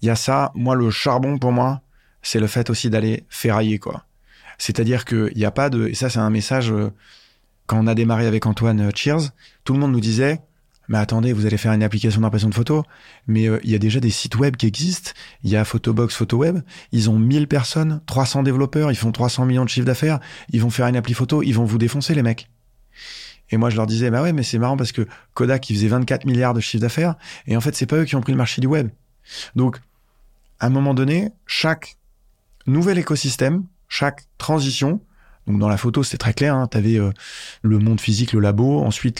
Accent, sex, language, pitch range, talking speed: French, male, French, 115-140 Hz, 230 wpm